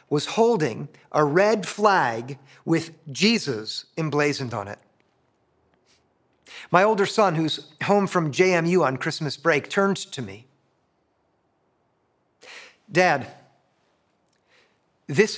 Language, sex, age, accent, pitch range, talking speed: English, male, 50-69, American, 145-205 Hz, 100 wpm